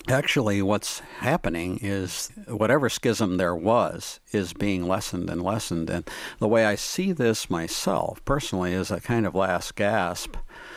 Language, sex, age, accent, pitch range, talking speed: English, male, 60-79, American, 90-115 Hz, 150 wpm